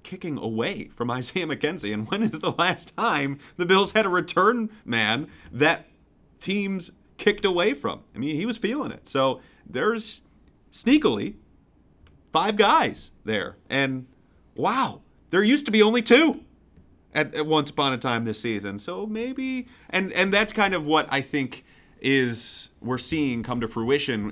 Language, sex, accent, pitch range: English, male, American, 105-165 Hz